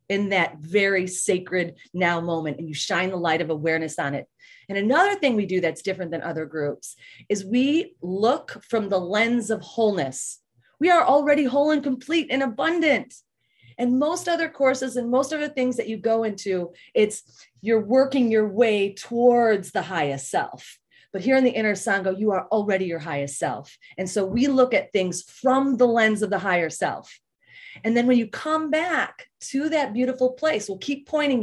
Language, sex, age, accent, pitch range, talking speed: English, female, 30-49, American, 185-255 Hz, 195 wpm